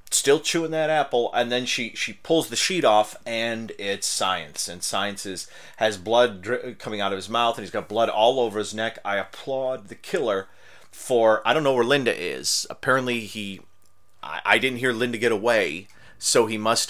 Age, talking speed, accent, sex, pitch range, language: 30-49, 195 wpm, American, male, 100-130 Hz, English